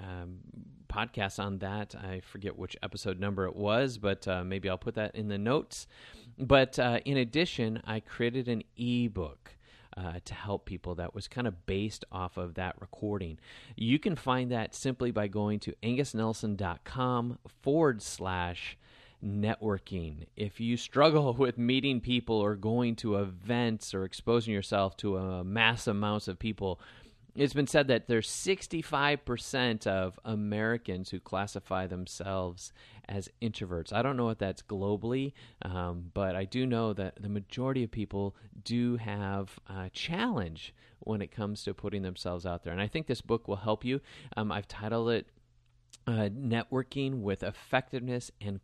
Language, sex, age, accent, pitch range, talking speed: English, male, 30-49, American, 95-120 Hz, 160 wpm